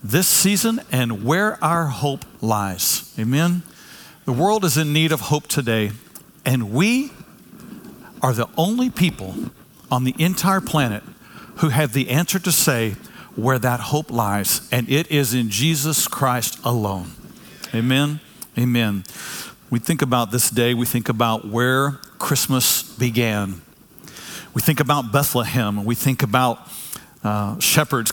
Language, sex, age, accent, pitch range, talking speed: English, male, 50-69, American, 120-160 Hz, 140 wpm